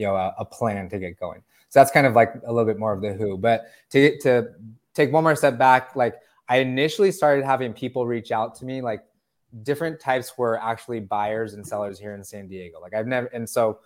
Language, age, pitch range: English, 20-39, 110-130 Hz